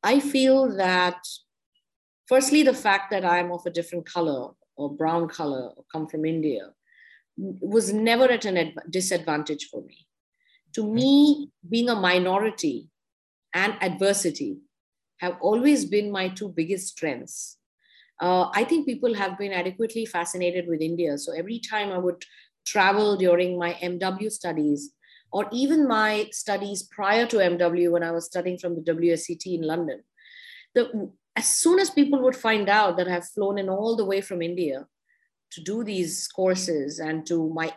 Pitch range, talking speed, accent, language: 175-230 Hz, 160 wpm, Indian, English